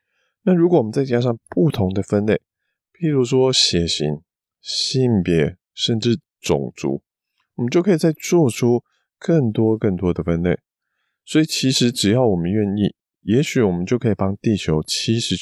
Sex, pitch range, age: male, 90-125 Hz, 20-39